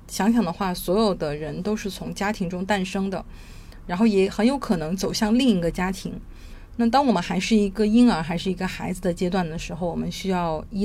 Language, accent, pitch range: Chinese, native, 180-225 Hz